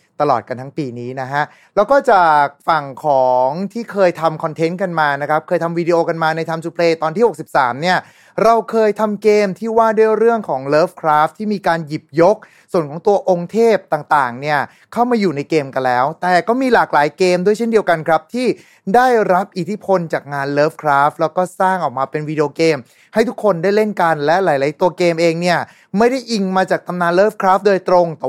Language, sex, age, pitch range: Thai, male, 20-39, 145-195 Hz